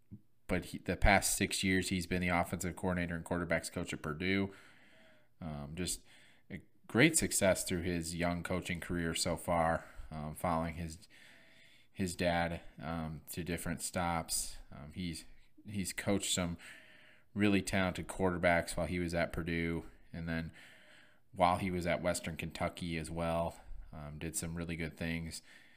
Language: English